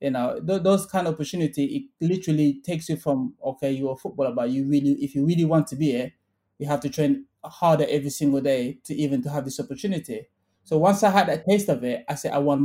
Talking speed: 245 wpm